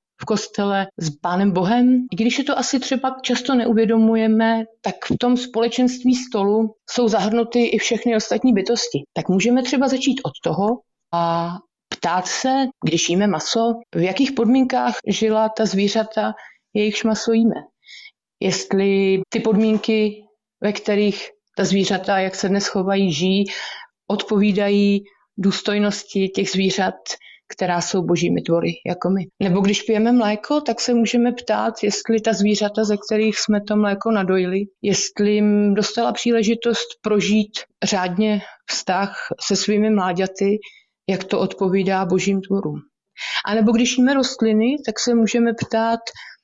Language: Czech